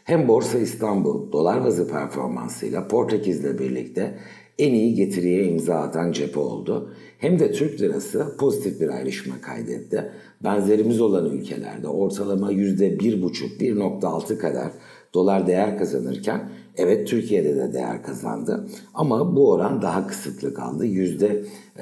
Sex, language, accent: male, Turkish, native